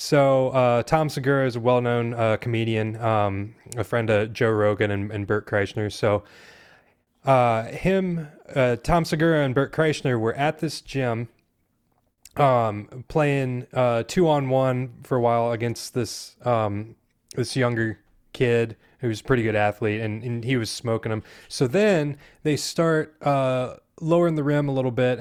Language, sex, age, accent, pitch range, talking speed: English, male, 20-39, American, 110-140 Hz, 165 wpm